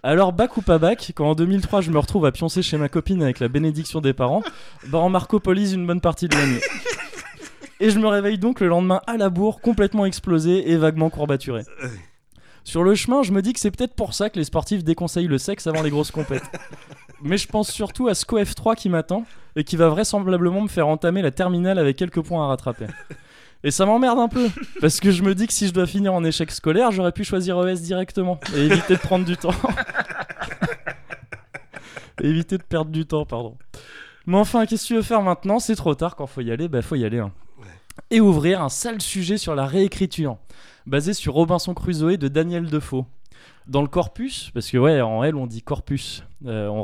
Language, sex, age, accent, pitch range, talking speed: French, male, 20-39, French, 145-195 Hz, 220 wpm